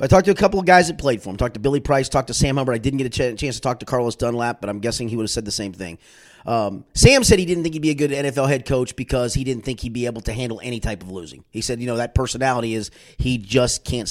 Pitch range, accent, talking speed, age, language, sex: 125-180 Hz, American, 330 wpm, 30-49, English, male